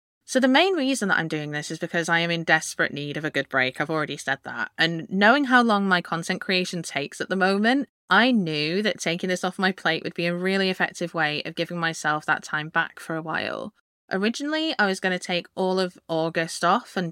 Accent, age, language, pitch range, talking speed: British, 20-39, English, 165-210 Hz, 240 wpm